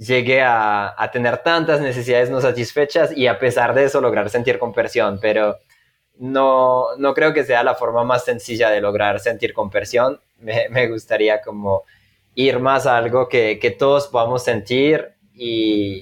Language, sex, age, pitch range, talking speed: Spanish, male, 20-39, 105-125 Hz, 165 wpm